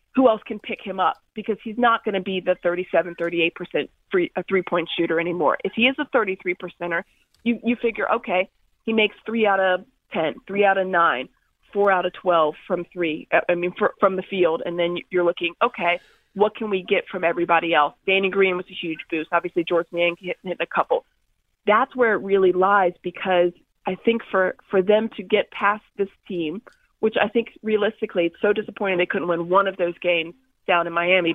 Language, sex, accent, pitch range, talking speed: English, female, American, 175-215 Hz, 210 wpm